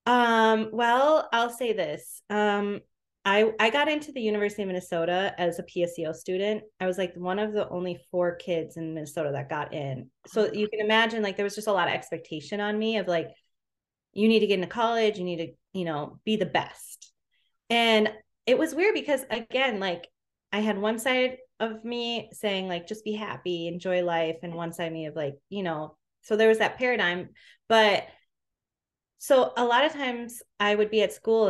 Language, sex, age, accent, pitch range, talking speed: English, female, 20-39, American, 170-220 Hz, 205 wpm